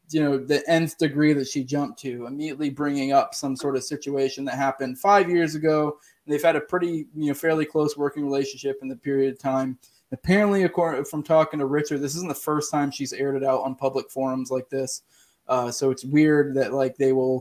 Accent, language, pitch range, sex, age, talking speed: American, English, 130-150 Hz, male, 20-39, 220 wpm